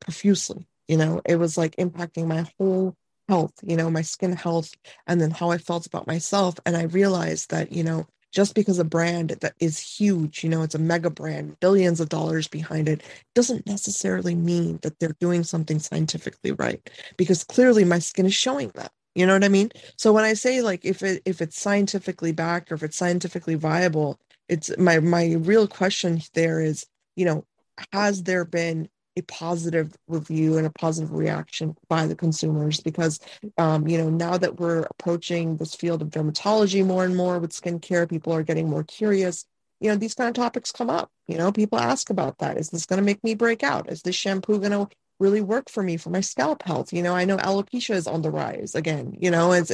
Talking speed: 210 wpm